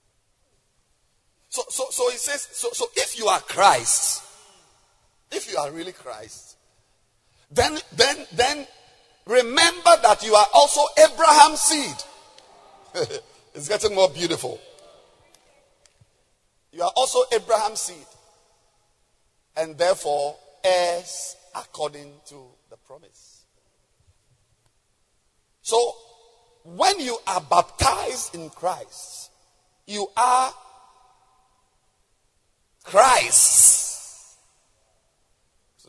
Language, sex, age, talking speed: English, male, 50-69, 90 wpm